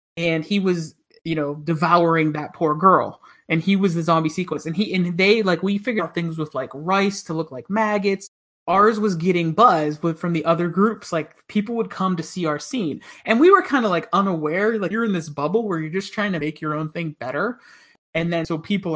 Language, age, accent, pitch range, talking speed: English, 30-49, American, 165-205 Hz, 235 wpm